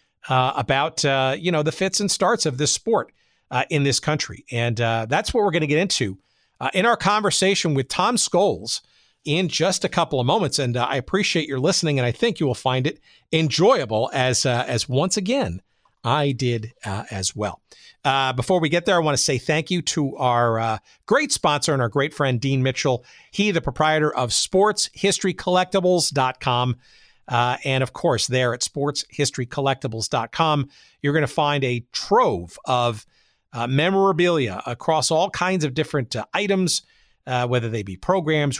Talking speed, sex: 185 wpm, male